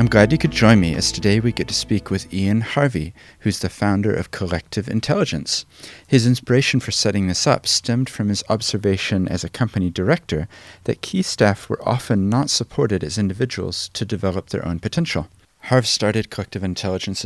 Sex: male